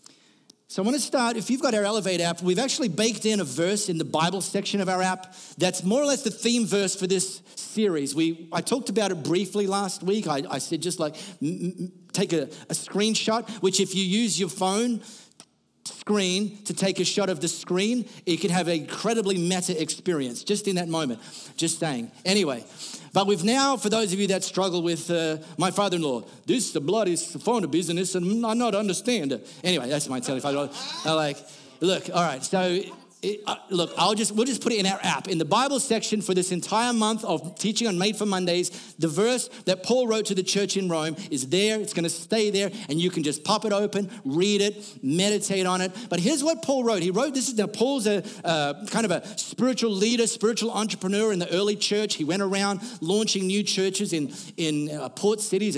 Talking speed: 220 wpm